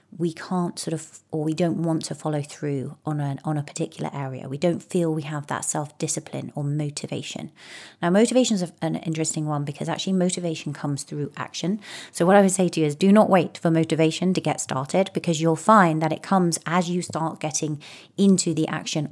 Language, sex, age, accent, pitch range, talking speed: English, female, 30-49, British, 150-175 Hz, 215 wpm